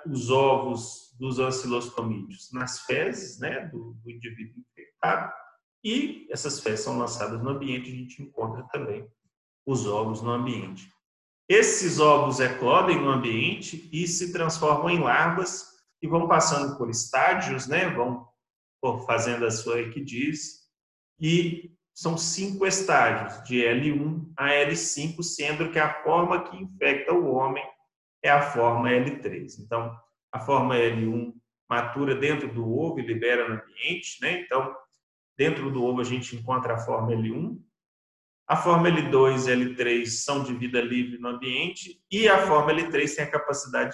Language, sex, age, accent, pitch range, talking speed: Portuguese, male, 40-59, Brazilian, 120-155 Hz, 150 wpm